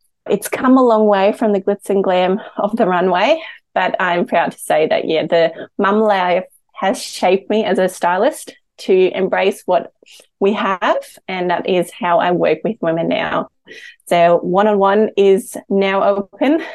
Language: English